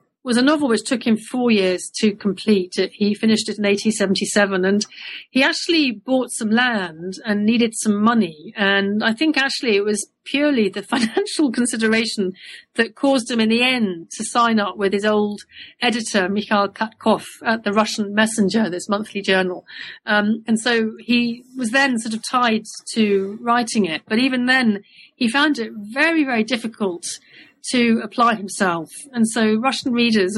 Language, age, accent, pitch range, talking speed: English, 40-59, British, 200-240 Hz, 170 wpm